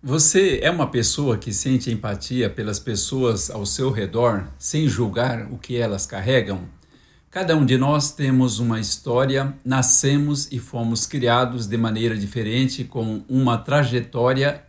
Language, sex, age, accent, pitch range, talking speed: Portuguese, male, 60-79, Brazilian, 115-145 Hz, 145 wpm